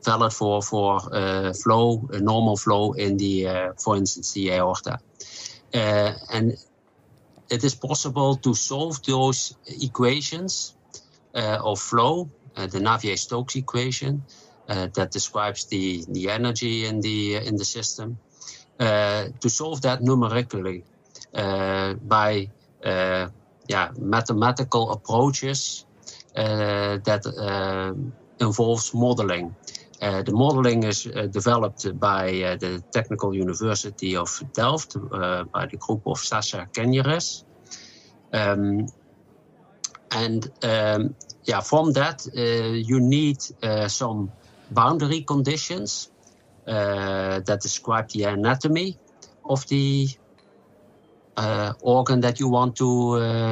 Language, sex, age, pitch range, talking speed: English, male, 50-69, 100-125 Hz, 115 wpm